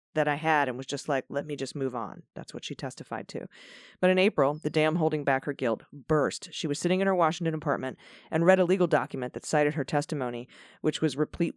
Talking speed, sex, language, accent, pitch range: 240 wpm, female, English, American, 140-175 Hz